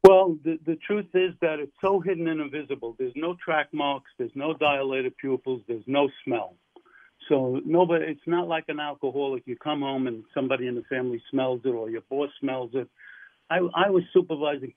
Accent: American